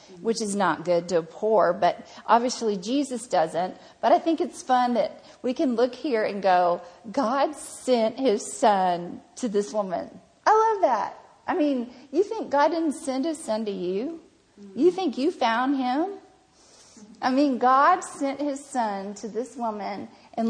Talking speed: 170 wpm